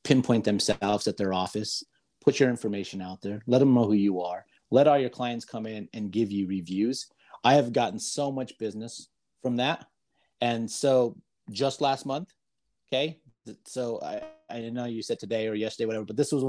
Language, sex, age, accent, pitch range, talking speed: English, male, 30-49, American, 110-135 Hz, 195 wpm